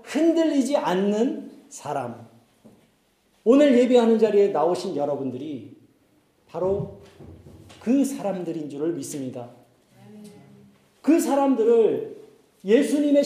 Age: 40-59